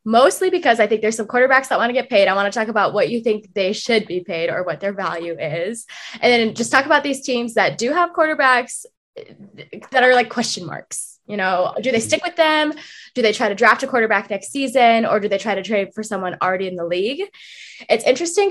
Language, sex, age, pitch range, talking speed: English, female, 10-29, 195-255 Hz, 245 wpm